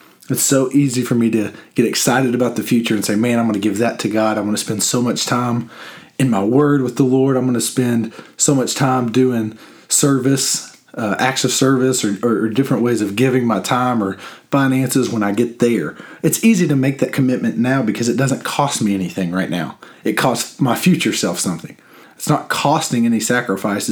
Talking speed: 220 wpm